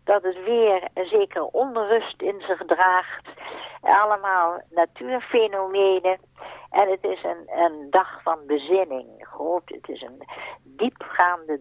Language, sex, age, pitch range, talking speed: Dutch, female, 60-79, 160-225 Hz, 125 wpm